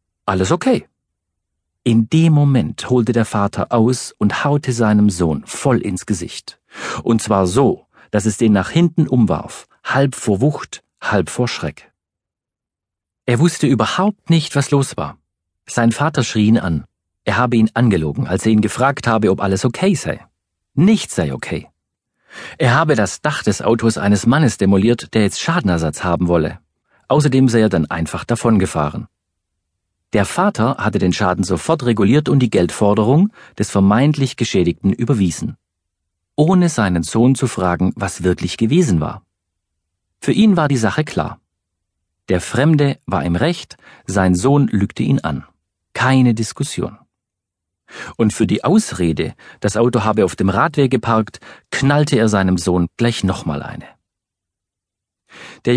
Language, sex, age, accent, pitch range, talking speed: German, male, 50-69, German, 90-130 Hz, 150 wpm